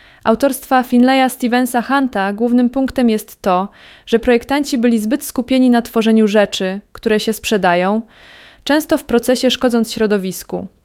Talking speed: 125 wpm